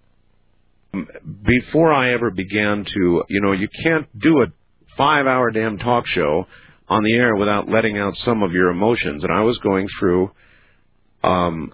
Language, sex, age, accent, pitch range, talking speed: English, male, 50-69, American, 80-110 Hz, 160 wpm